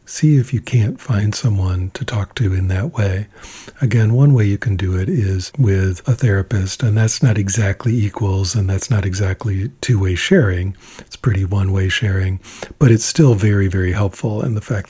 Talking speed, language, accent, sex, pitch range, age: 190 wpm, English, American, male, 95-120 Hz, 50-69